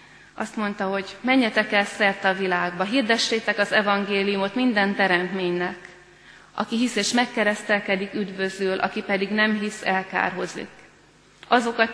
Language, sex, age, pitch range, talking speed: Hungarian, female, 30-49, 190-225 Hz, 120 wpm